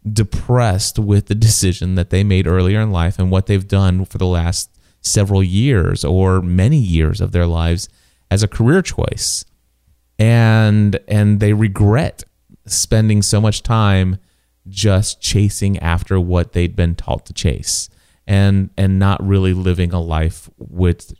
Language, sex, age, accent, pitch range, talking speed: English, male, 30-49, American, 85-105 Hz, 155 wpm